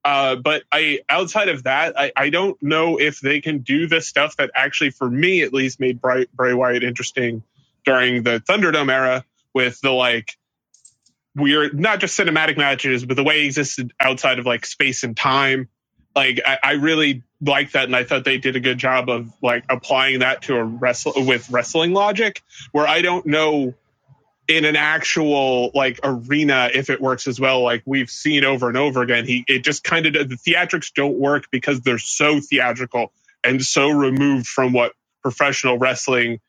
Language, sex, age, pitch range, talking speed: English, male, 30-49, 125-150 Hz, 190 wpm